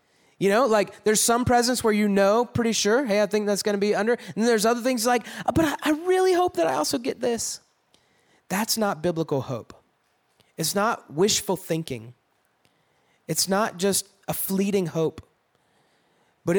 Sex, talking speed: male, 175 wpm